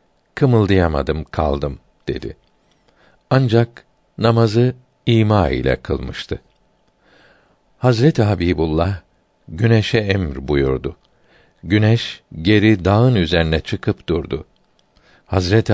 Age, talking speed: 60-79, 75 wpm